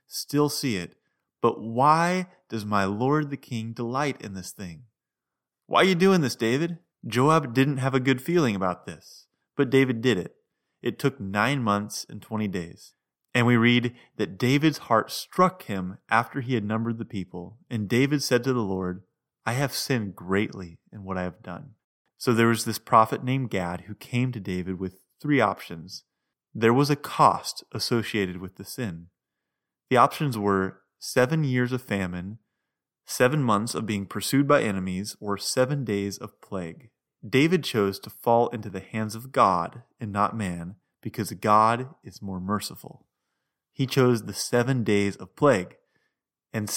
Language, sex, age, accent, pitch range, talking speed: English, male, 30-49, American, 100-135 Hz, 170 wpm